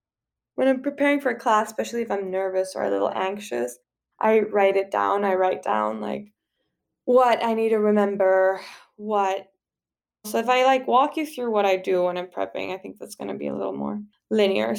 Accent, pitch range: American, 175-210 Hz